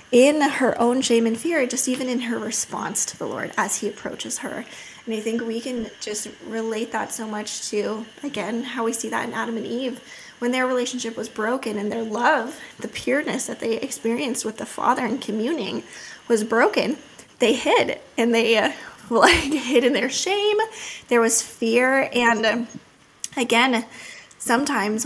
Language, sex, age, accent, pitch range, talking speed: English, female, 20-39, American, 225-260 Hz, 180 wpm